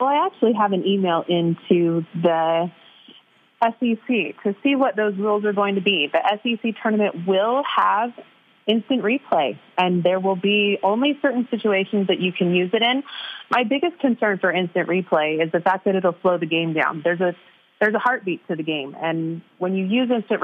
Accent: American